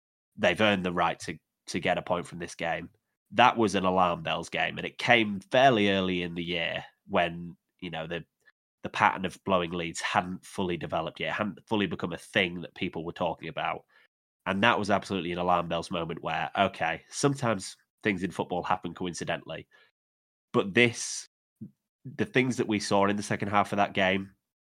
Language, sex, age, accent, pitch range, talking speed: English, male, 20-39, British, 90-105 Hz, 190 wpm